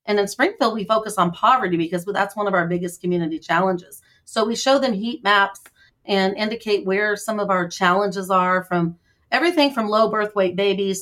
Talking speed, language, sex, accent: 195 wpm, English, female, American